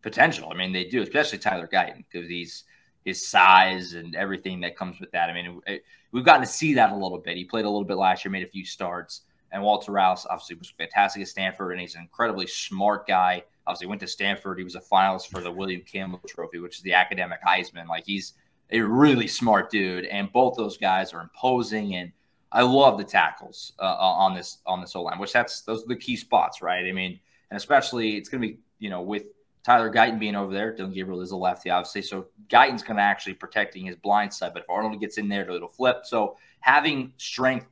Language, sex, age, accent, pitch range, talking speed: English, male, 20-39, American, 90-115 Hz, 235 wpm